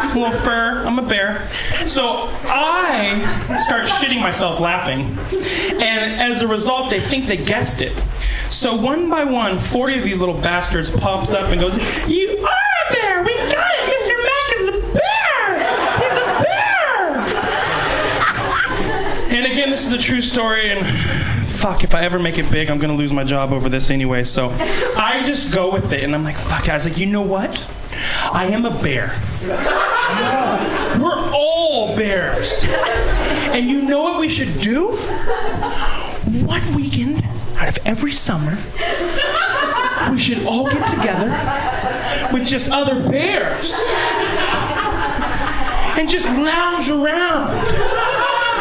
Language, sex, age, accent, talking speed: English, male, 20-39, American, 150 wpm